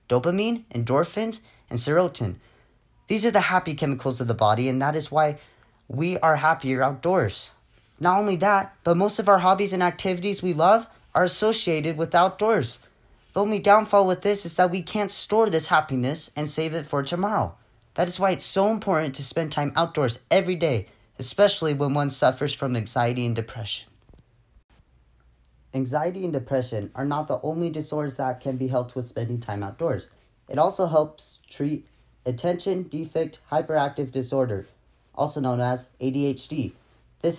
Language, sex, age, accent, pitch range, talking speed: English, male, 30-49, American, 125-175 Hz, 165 wpm